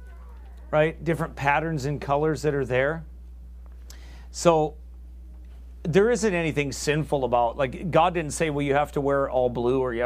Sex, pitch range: male, 105-155 Hz